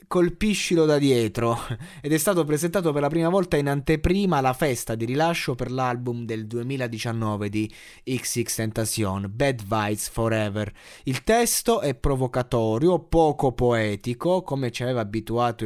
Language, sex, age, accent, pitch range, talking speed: Italian, male, 20-39, native, 105-145 Hz, 140 wpm